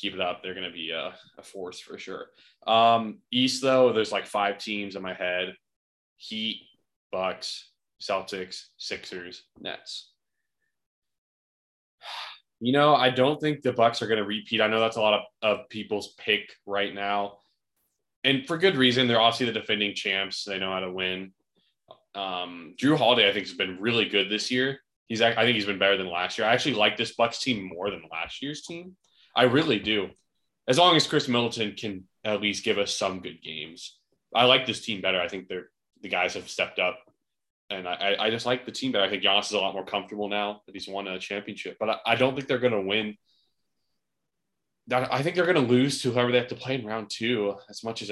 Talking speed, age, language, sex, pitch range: 215 wpm, 20-39, English, male, 100-125 Hz